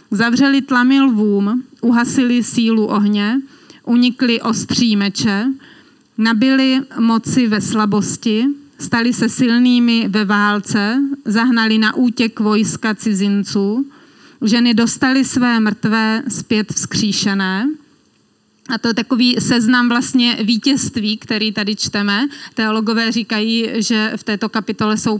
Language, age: Czech, 30-49